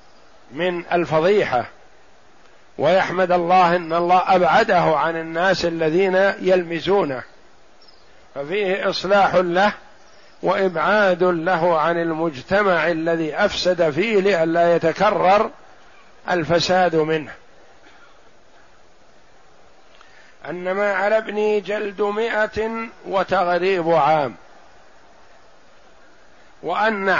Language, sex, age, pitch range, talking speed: Arabic, male, 50-69, 165-190 Hz, 75 wpm